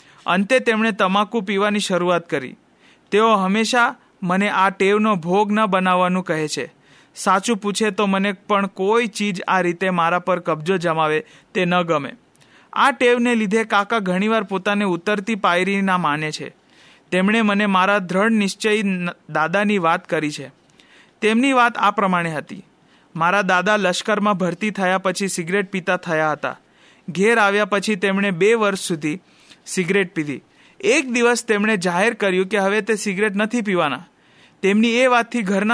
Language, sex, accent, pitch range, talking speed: Hindi, male, native, 180-215 Hz, 110 wpm